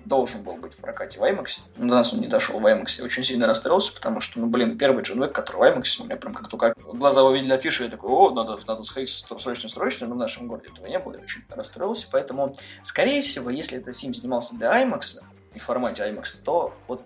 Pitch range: 125-195 Hz